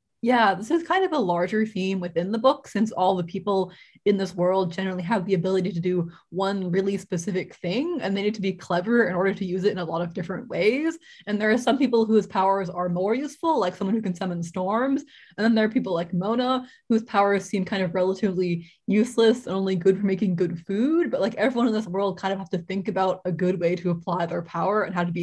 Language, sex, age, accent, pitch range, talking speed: English, female, 20-39, American, 185-225 Hz, 250 wpm